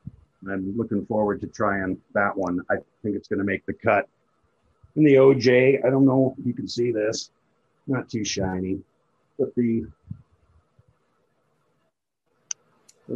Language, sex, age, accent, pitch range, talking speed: English, male, 50-69, American, 100-125 Hz, 145 wpm